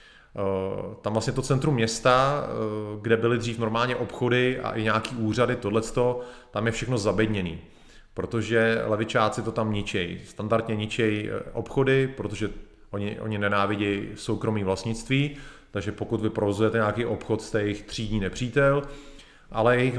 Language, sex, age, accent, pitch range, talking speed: Czech, male, 30-49, native, 105-125 Hz, 140 wpm